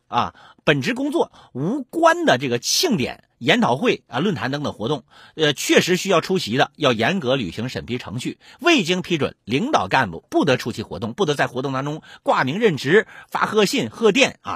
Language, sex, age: Chinese, male, 50-69